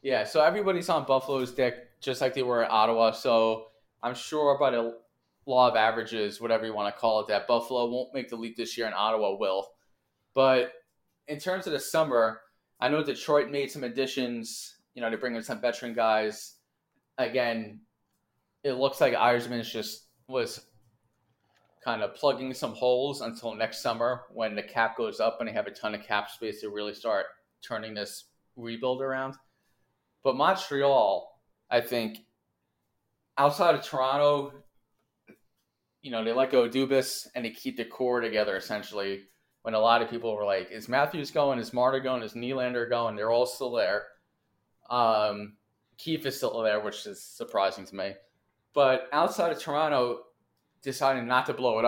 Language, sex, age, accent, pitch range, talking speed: English, male, 20-39, American, 110-135 Hz, 175 wpm